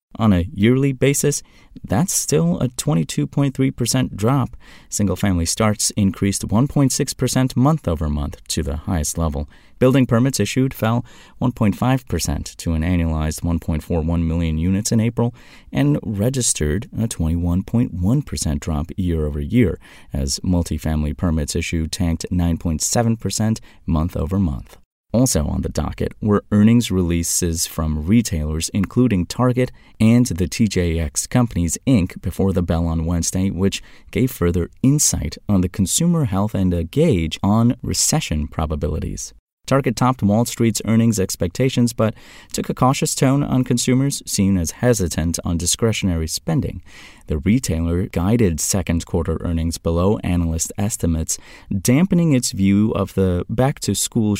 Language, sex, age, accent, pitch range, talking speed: English, male, 30-49, American, 85-120 Hz, 155 wpm